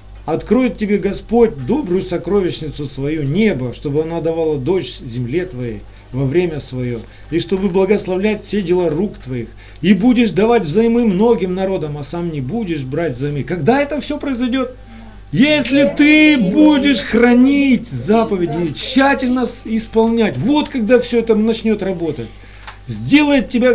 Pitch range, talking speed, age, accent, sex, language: 135-225 Hz, 135 wpm, 40-59, native, male, Russian